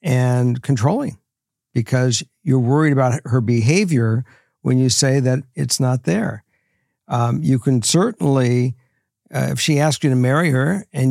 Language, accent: English, American